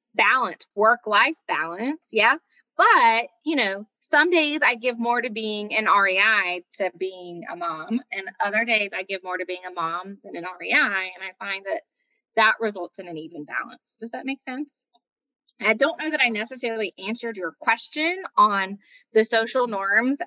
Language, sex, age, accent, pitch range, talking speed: English, female, 20-39, American, 200-270 Hz, 180 wpm